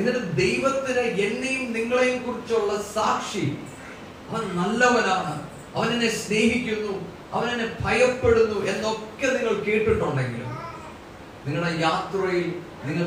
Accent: Indian